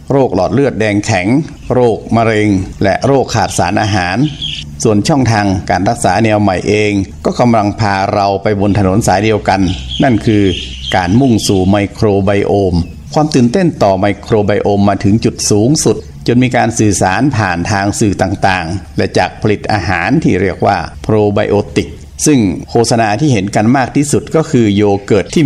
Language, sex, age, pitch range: Thai, male, 60-79, 100-115 Hz